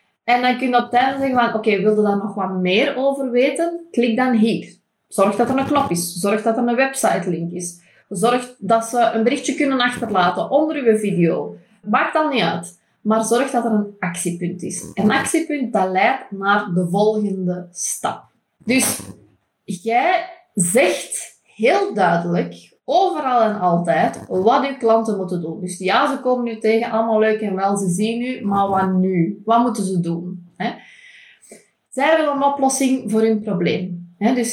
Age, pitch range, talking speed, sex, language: 20-39, 195-260 Hz, 180 wpm, female, Dutch